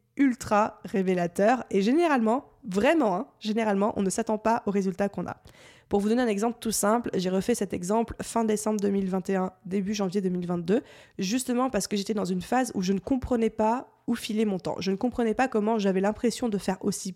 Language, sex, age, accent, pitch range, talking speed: French, female, 20-39, French, 190-230 Hz, 205 wpm